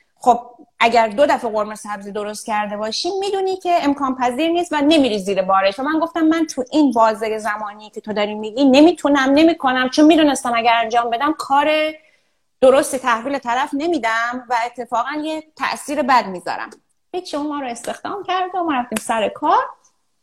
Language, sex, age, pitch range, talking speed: Persian, female, 30-49, 210-300 Hz, 175 wpm